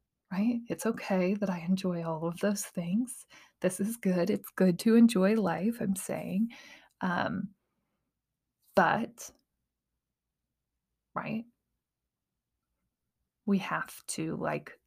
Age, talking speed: 20-39, 110 wpm